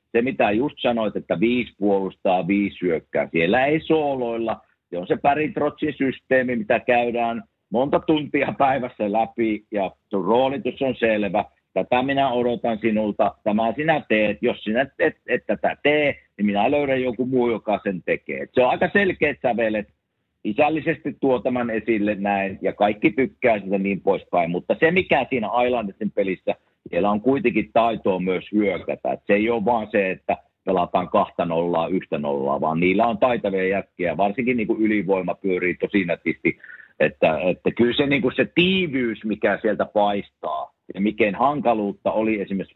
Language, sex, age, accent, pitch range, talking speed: Finnish, male, 50-69, native, 100-125 Hz, 160 wpm